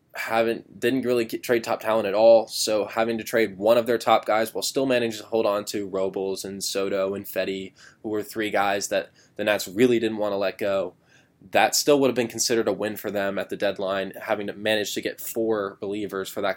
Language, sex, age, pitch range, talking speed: English, male, 10-29, 105-120 Hz, 235 wpm